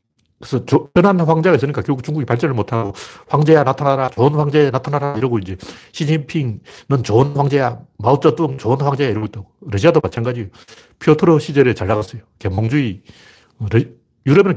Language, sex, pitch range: Korean, male, 105-145 Hz